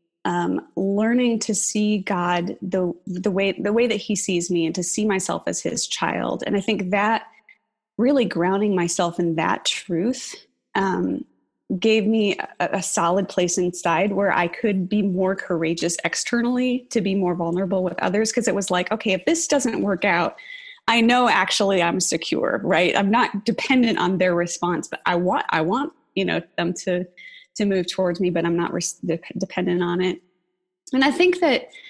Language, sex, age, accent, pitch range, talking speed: English, female, 20-39, American, 175-220 Hz, 190 wpm